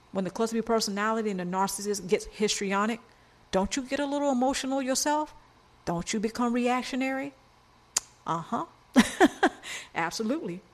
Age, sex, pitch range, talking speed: 50-69, female, 180-230 Hz, 125 wpm